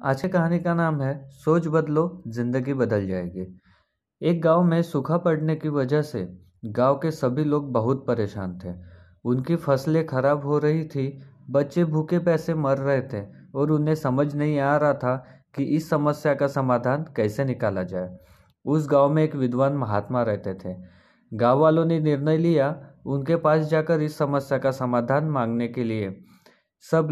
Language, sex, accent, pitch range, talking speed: Hindi, male, native, 125-155 Hz, 170 wpm